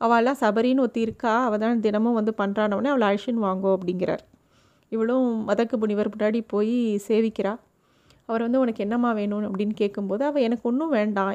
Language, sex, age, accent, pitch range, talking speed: Tamil, female, 30-49, native, 200-230 Hz, 160 wpm